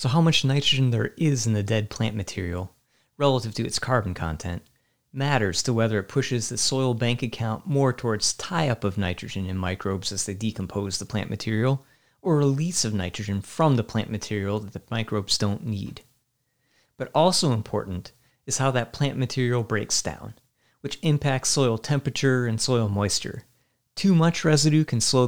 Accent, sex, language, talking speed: American, male, English, 175 wpm